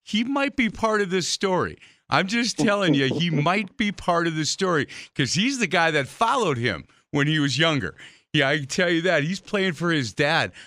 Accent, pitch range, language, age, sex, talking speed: American, 120-150 Hz, English, 40-59, male, 225 wpm